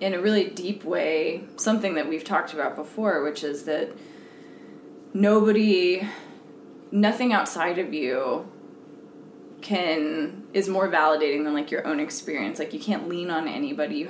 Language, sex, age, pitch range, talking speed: English, female, 20-39, 155-195 Hz, 150 wpm